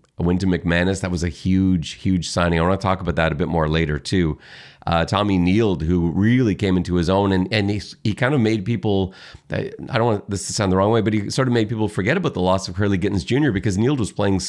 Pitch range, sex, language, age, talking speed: 90-110 Hz, male, English, 30-49, 270 wpm